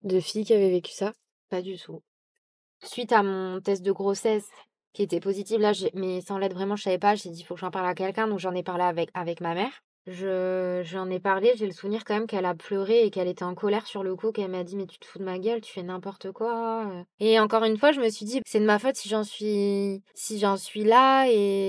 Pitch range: 190-220 Hz